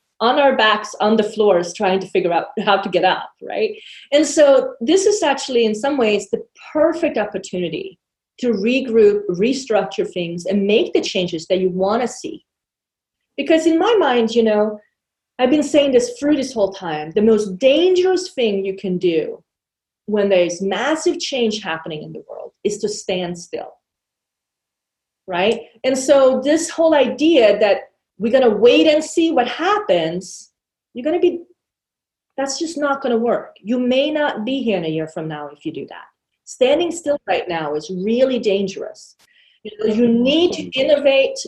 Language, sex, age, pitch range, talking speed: English, female, 30-49, 195-275 Hz, 180 wpm